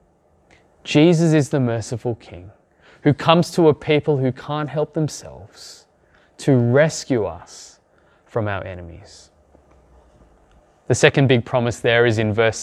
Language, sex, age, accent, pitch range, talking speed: English, male, 20-39, Australian, 110-165 Hz, 135 wpm